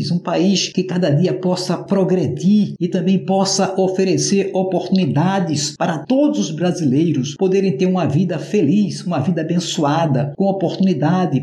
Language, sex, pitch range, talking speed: Portuguese, male, 150-190 Hz, 135 wpm